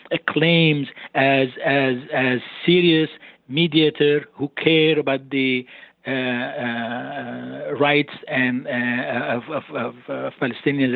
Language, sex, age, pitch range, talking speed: English, male, 50-69, 130-170 Hz, 115 wpm